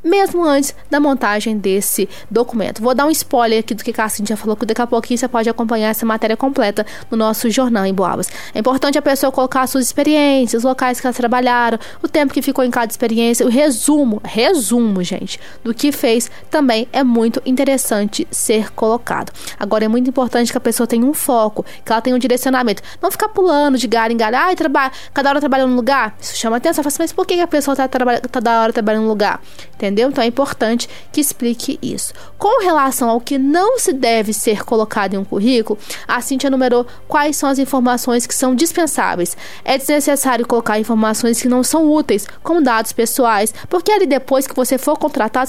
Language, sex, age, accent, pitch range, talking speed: Portuguese, female, 20-39, Brazilian, 230-280 Hz, 210 wpm